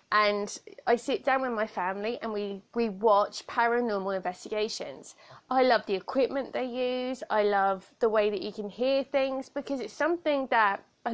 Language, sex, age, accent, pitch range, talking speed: English, female, 20-39, British, 210-280 Hz, 180 wpm